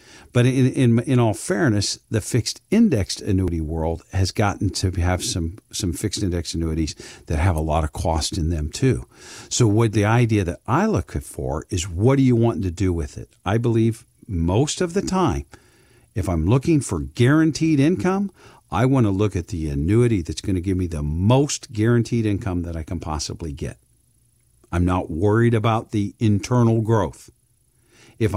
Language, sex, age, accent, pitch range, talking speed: English, male, 50-69, American, 85-120 Hz, 185 wpm